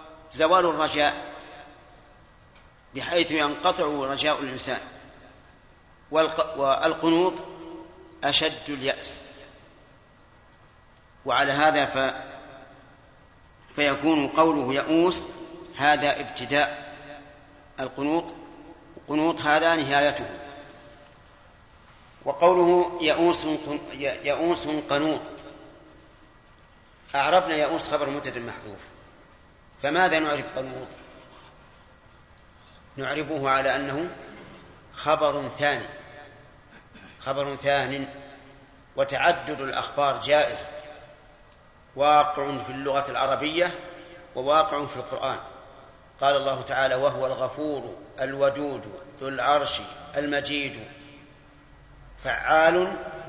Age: 40-59